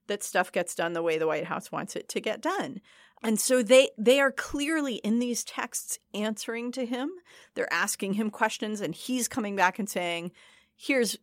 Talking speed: 200 wpm